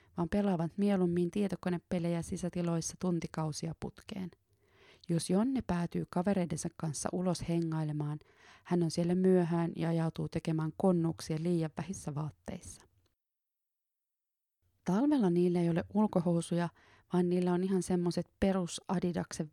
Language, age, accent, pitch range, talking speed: Finnish, 20-39, native, 165-185 Hz, 115 wpm